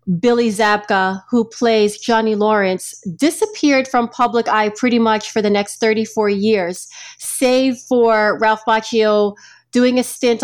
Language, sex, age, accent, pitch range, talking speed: English, female, 30-49, American, 205-240 Hz, 140 wpm